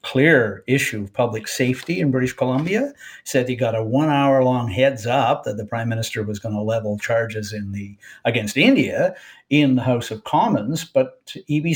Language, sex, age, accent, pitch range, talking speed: English, male, 60-79, American, 125-190 Hz, 190 wpm